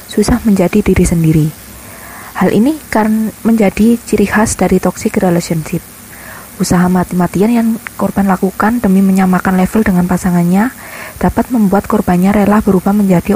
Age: 20-39